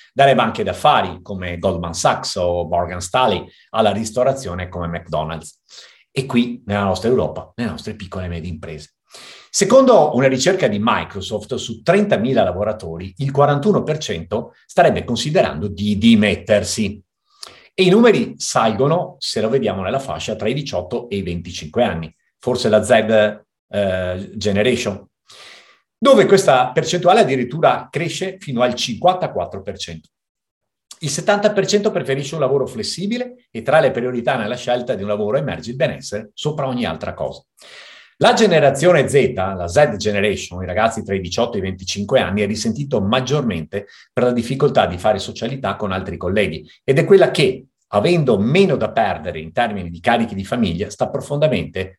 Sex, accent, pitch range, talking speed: male, native, 95-145 Hz, 150 wpm